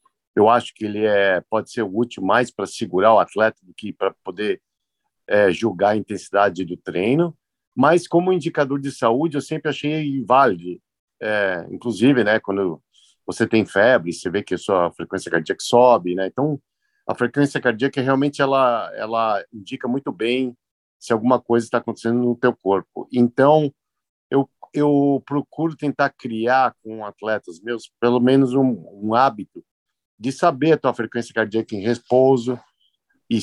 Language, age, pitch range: Portuguese, 50-69, 105-135 Hz